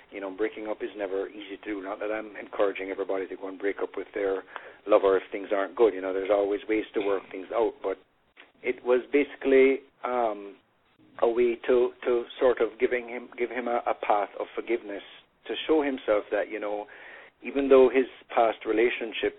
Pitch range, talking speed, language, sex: 100-125 Hz, 205 wpm, English, male